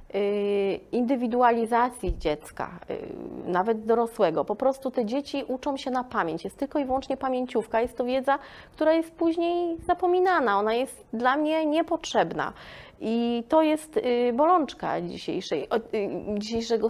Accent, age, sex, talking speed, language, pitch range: native, 20-39, female, 125 wpm, Polish, 205-275 Hz